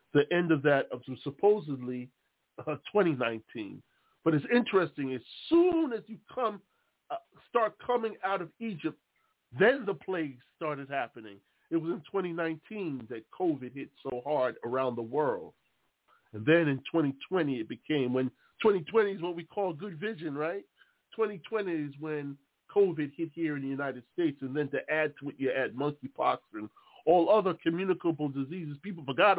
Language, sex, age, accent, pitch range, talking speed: English, male, 40-59, American, 140-205 Hz, 165 wpm